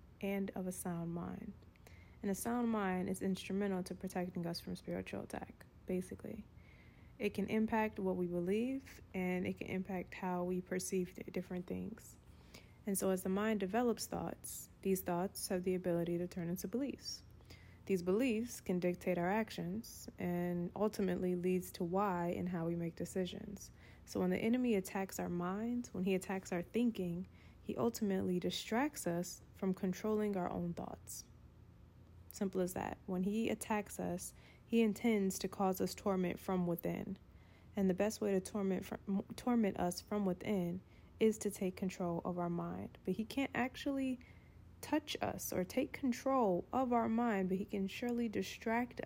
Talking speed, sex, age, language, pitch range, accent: 165 wpm, female, 20-39, English, 180-215 Hz, American